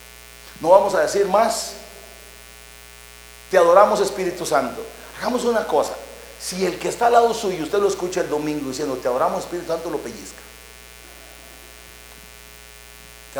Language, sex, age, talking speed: Spanish, male, 40-59, 145 wpm